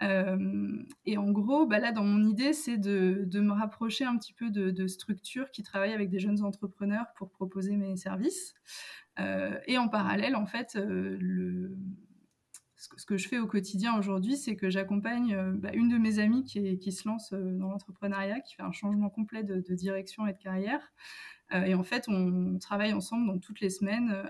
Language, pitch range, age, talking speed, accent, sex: French, 190-215 Hz, 20-39, 210 wpm, French, female